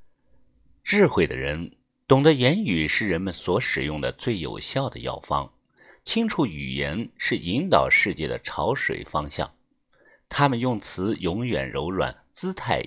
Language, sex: Chinese, male